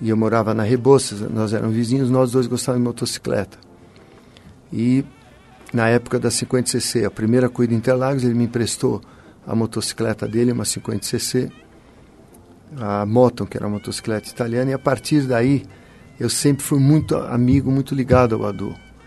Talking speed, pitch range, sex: 155 wpm, 110-130 Hz, male